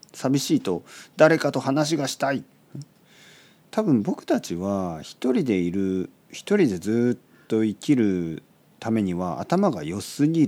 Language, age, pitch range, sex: Japanese, 40-59, 100-155 Hz, male